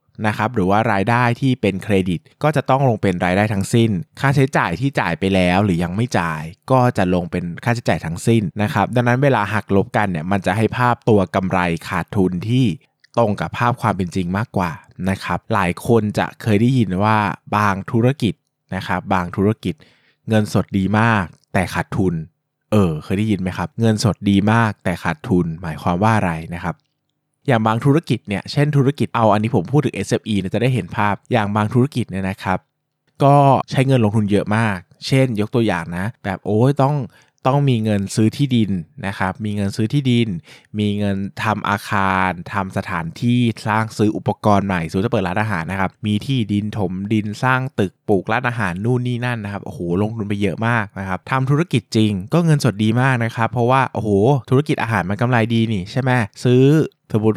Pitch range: 95-125 Hz